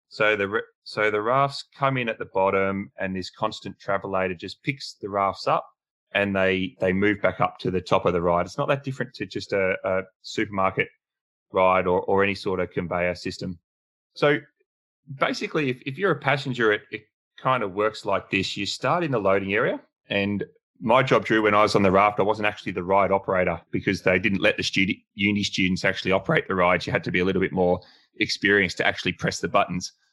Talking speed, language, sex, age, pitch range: 220 wpm, English, male, 20-39, 95-110 Hz